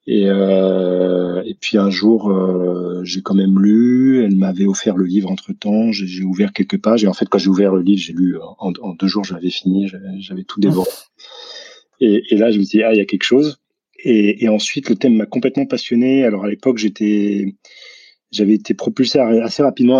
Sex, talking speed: male, 215 wpm